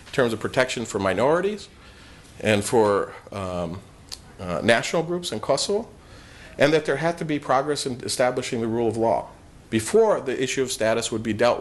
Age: 40-59